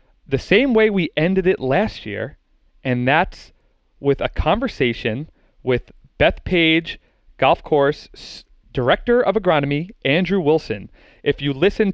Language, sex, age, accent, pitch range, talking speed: English, male, 30-49, American, 135-175 Hz, 130 wpm